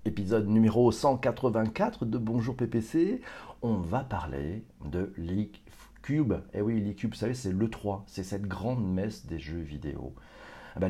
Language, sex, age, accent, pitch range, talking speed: French, male, 40-59, French, 100-130 Hz, 155 wpm